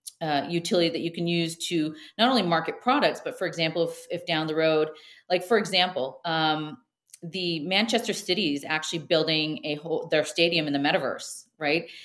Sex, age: female, 40-59